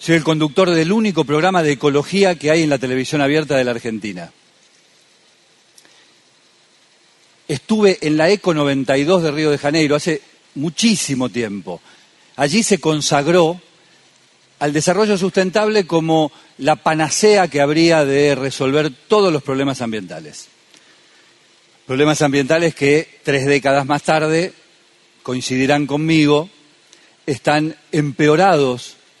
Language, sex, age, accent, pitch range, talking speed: Spanish, male, 40-59, Argentinian, 135-175 Hz, 115 wpm